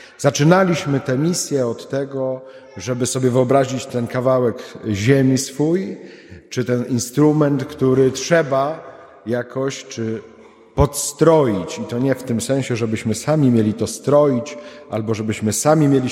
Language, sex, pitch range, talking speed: Polish, male, 125-150 Hz, 130 wpm